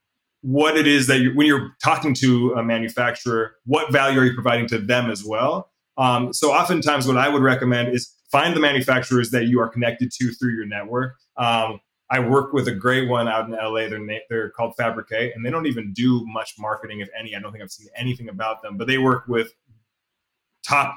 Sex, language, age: male, English, 20-39